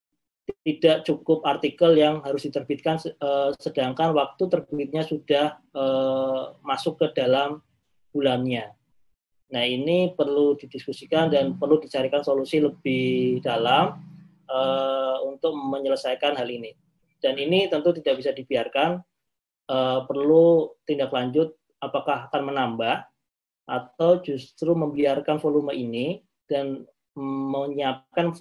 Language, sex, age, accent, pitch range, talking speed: Indonesian, male, 20-39, native, 135-165 Hz, 100 wpm